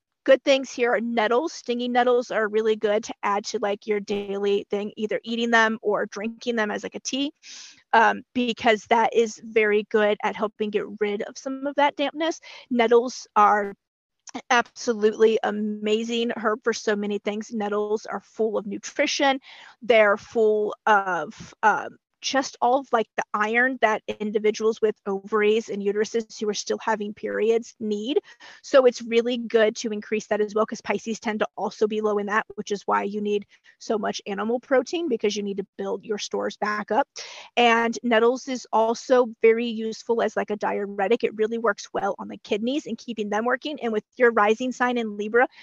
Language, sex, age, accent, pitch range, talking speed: English, female, 30-49, American, 210-245 Hz, 185 wpm